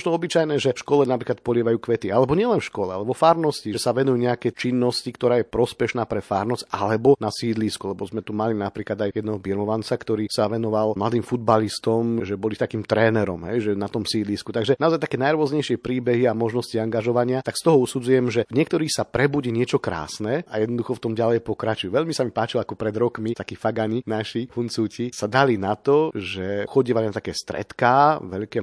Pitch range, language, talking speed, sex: 105-125 Hz, Slovak, 200 wpm, male